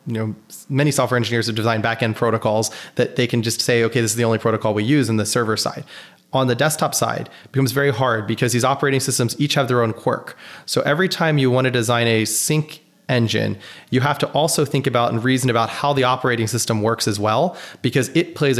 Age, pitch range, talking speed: 30-49, 115-140 Hz, 230 wpm